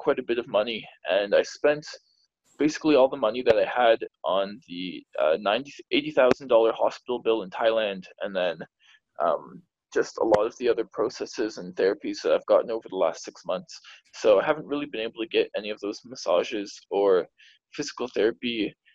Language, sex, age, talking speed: English, male, 20-39, 185 wpm